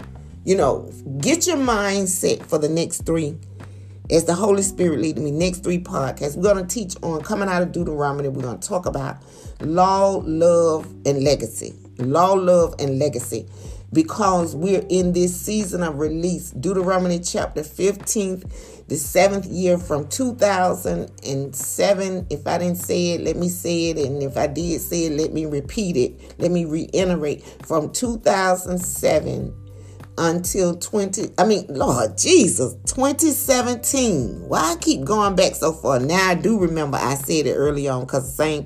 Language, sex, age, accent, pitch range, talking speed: English, female, 40-59, American, 140-195 Hz, 160 wpm